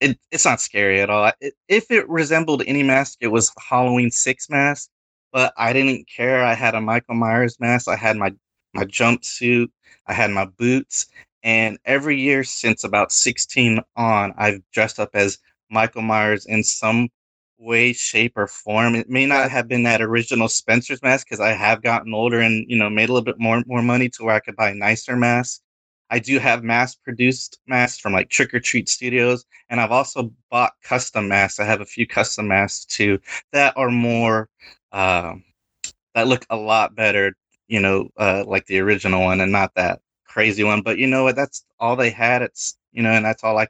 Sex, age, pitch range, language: male, 20-39, 105-125 Hz, English